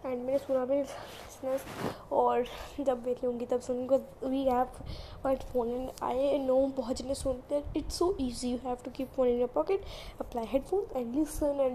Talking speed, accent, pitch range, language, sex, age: 100 wpm, native, 250-290 Hz, Hindi, female, 20-39